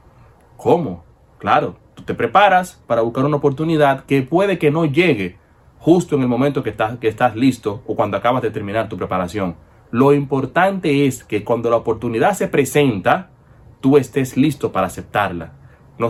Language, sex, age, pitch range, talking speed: Spanish, male, 30-49, 120-160 Hz, 170 wpm